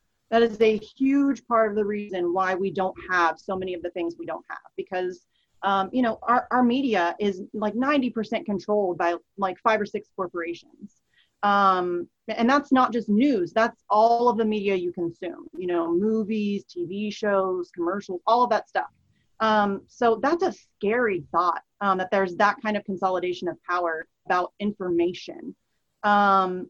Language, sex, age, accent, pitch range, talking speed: English, female, 30-49, American, 180-230 Hz, 175 wpm